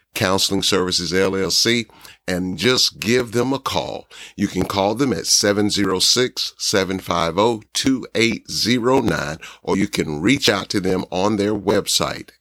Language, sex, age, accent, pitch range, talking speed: English, male, 50-69, American, 100-130 Hz, 120 wpm